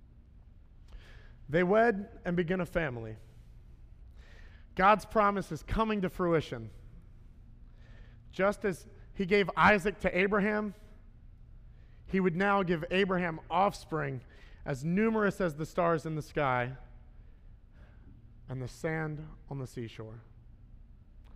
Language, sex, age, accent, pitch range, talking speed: English, male, 30-49, American, 110-170 Hz, 110 wpm